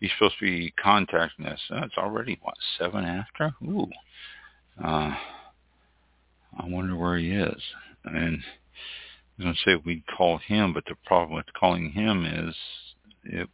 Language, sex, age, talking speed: English, male, 60-79, 160 wpm